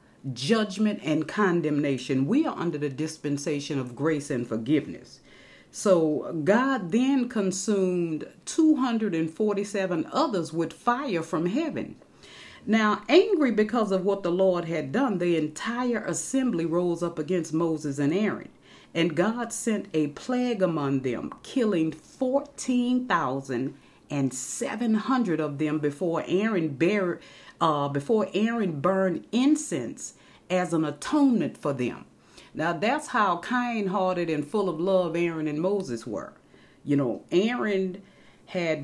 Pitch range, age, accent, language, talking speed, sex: 160-230 Hz, 40-59, American, English, 125 wpm, female